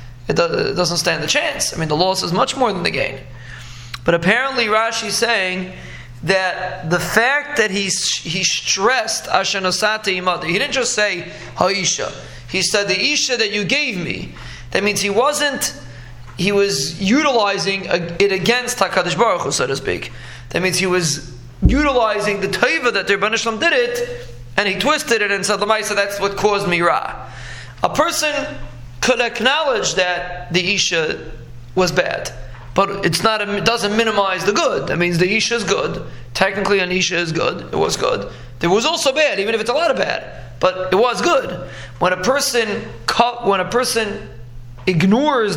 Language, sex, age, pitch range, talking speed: English, male, 30-49, 175-215 Hz, 175 wpm